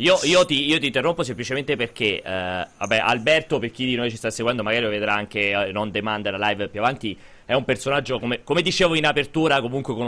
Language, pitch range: Italian, 110-145 Hz